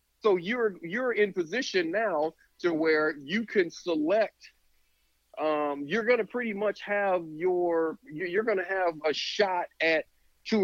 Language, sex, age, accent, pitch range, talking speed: English, male, 40-59, American, 130-180 Hz, 140 wpm